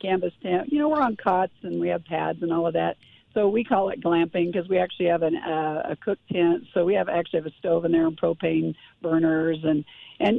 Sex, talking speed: female, 250 wpm